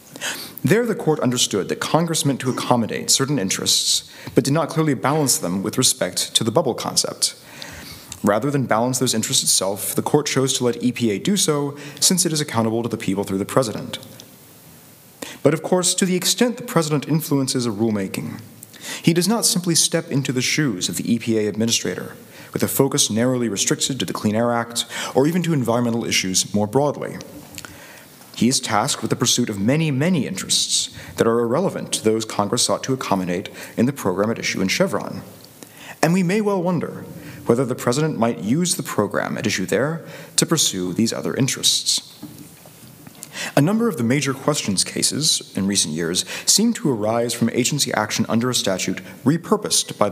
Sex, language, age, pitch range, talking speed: male, English, 30-49, 115-155 Hz, 185 wpm